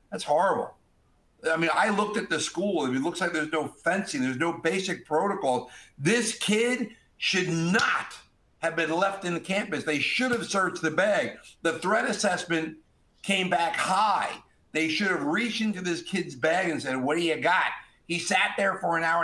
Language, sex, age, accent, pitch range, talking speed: English, male, 50-69, American, 155-195 Hz, 190 wpm